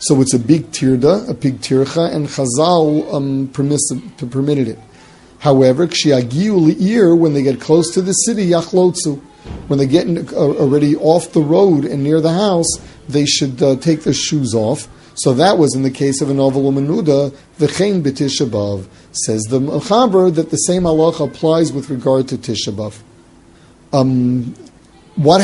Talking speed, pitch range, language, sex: 165 wpm, 130-160 Hz, English, male